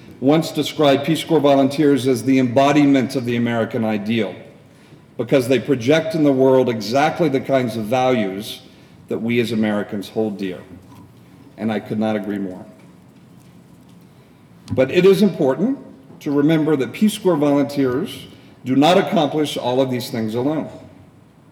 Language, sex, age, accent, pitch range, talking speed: English, male, 50-69, American, 125-150 Hz, 150 wpm